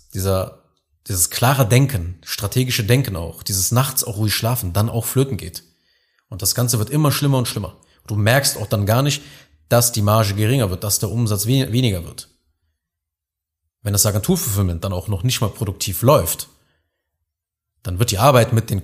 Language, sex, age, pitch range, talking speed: German, male, 30-49, 100-125 Hz, 180 wpm